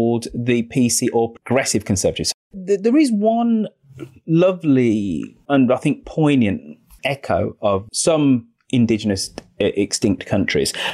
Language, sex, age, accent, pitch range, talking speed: English, male, 30-49, British, 100-130 Hz, 105 wpm